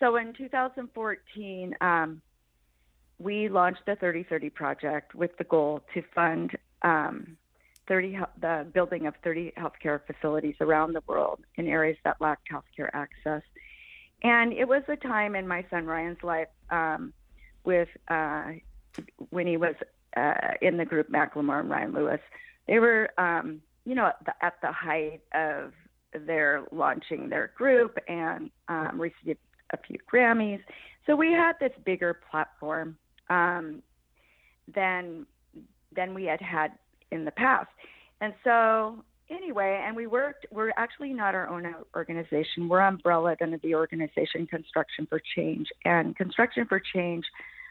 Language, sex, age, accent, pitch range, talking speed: English, female, 40-59, American, 160-210 Hz, 145 wpm